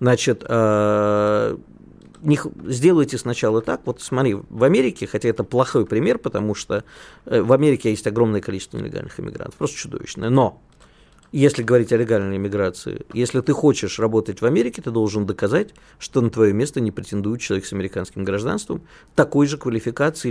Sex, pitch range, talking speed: male, 110-145 Hz, 150 wpm